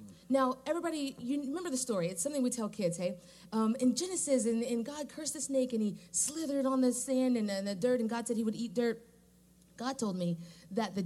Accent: American